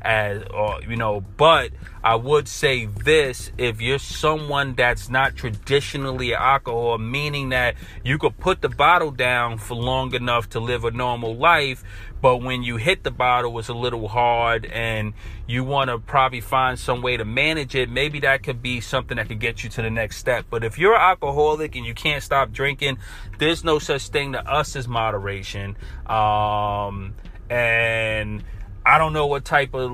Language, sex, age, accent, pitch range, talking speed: English, male, 30-49, American, 115-135 Hz, 185 wpm